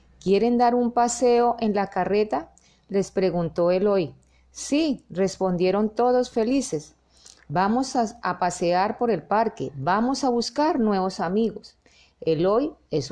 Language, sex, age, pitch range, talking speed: Spanish, female, 40-59, 185-240 Hz, 130 wpm